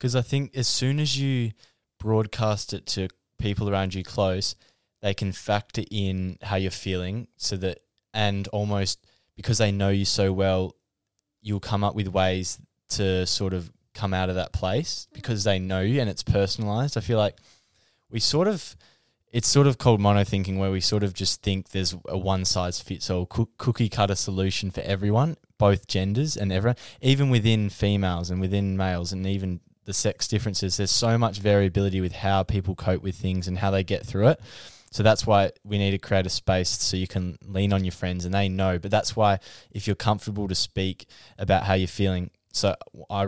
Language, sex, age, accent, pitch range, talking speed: English, male, 10-29, Australian, 95-110 Hz, 195 wpm